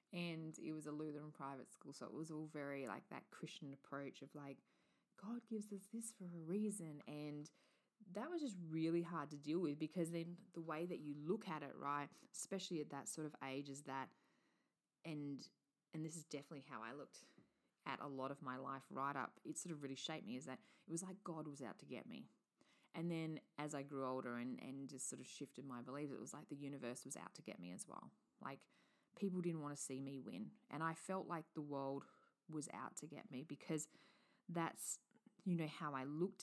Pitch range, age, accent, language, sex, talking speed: 140-175 Hz, 20-39, Australian, English, female, 225 wpm